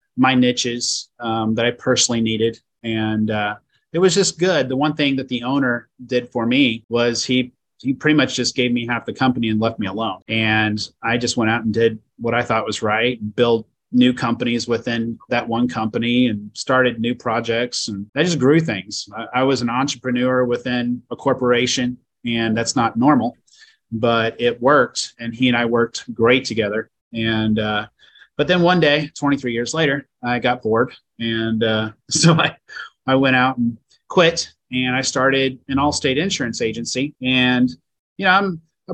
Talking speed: 185 wpm